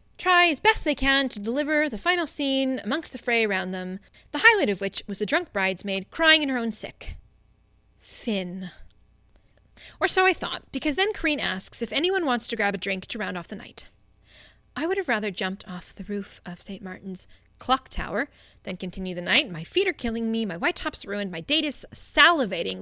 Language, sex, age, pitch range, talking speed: English, female, 20-39, 180-275 Hz, 210 wpm